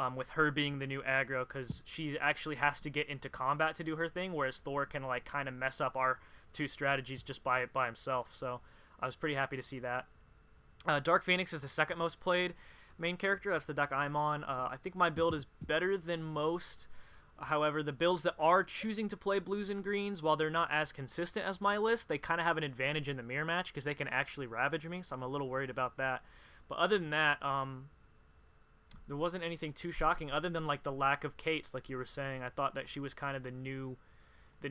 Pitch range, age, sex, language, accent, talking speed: 130-160 Hz, 20-39, male, English, American, 240 wpm